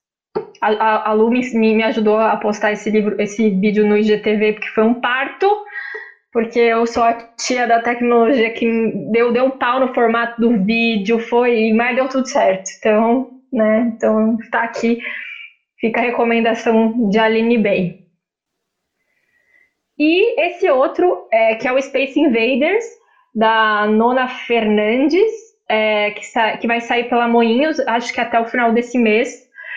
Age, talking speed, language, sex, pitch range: 20-39, 155 wpm, Portuguese, female, 230-290 Hz